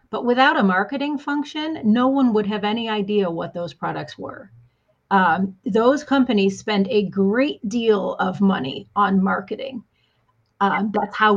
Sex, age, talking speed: female, 30-49, 155 wpm